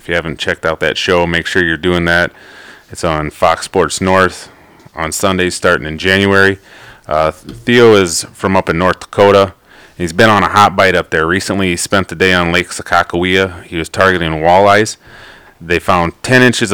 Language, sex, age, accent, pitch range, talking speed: English, male, 30-49, American, 85-95 Hz, 195 wpm